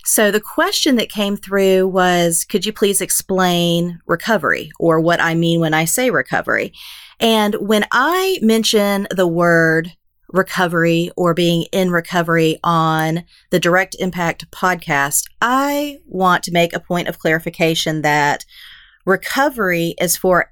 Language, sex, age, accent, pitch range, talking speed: English, female, 40-59, American, 165-215 Hz, 140 wpm